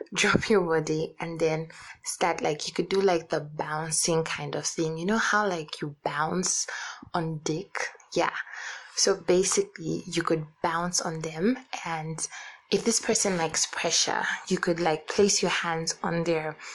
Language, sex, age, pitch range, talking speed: English, female, 20-39, 165-205 Hz, 165 wpm